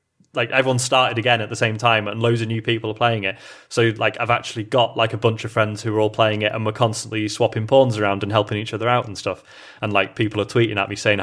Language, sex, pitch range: English, male, 105-120 Hz